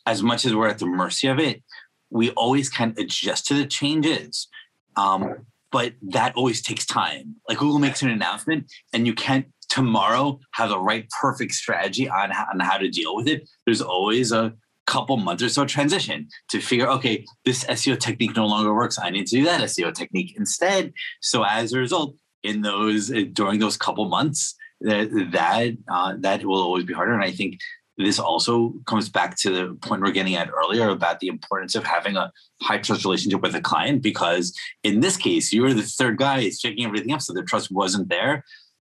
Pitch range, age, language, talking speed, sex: 105-145 Hz, 30-49, English, 200 wpm, male